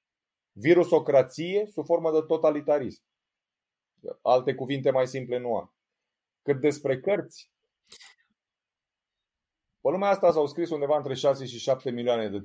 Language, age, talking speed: Romanian, 30-49, 125 wpm